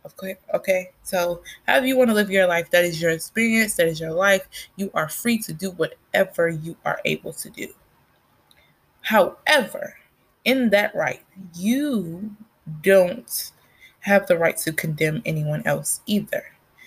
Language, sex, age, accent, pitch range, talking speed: English, female, 20-39, American, 165-210 Hz, 155 wpm